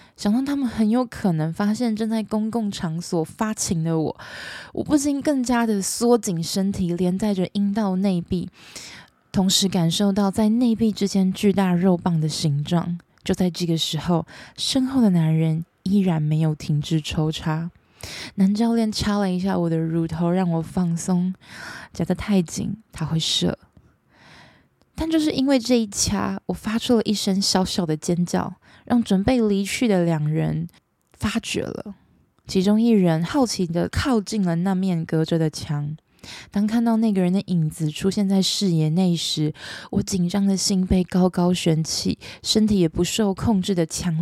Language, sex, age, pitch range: Chinese, female, 20-39, 170-215 Hz